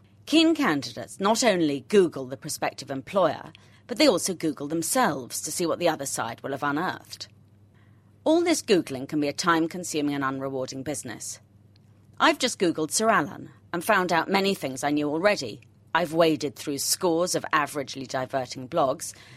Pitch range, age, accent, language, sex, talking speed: 125-185 Hz, 40-59, British, English, female, 165 wpm